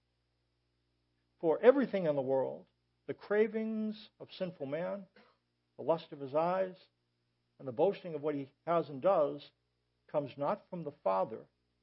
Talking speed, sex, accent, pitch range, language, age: 145 wpm, male, American, 130-195 Hz, English, 60-79